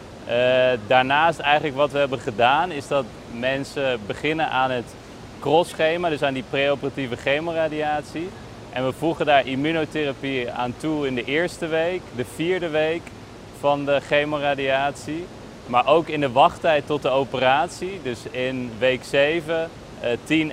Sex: male